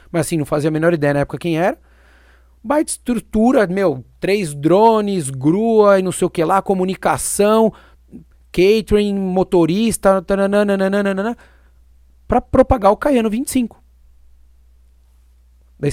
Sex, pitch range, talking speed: male, 130-205 Hz, 120 wpm